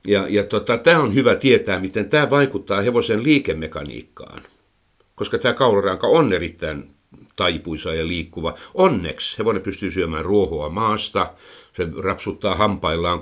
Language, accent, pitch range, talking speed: Finnish, native, 90-120 Hz, 130 wpm